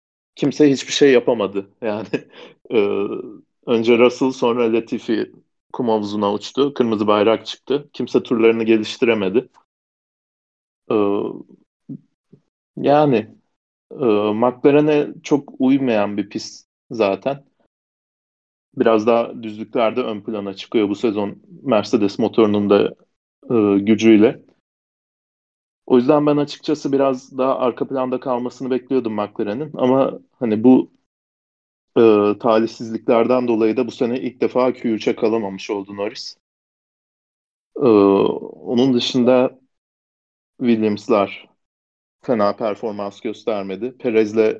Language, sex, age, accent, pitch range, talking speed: Turkish, male, 40-59, native, 105-130 Hz, 100 wpm